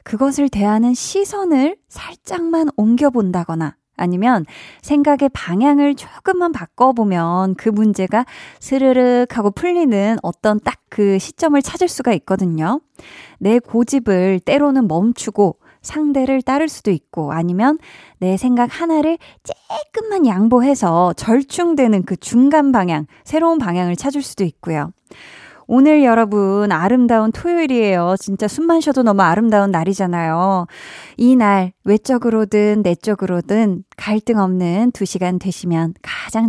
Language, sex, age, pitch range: Korean, female, 20-39, 190-285 Hz